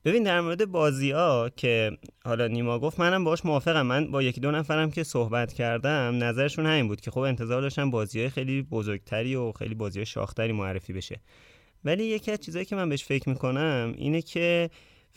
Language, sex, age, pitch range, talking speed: Persian, male, 30-49, 110-140 Hz, 180 wpm